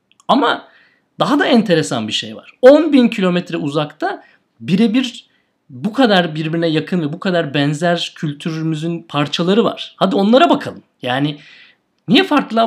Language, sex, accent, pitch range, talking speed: Turkish, male, native, 140-210 Hz, 135 wpm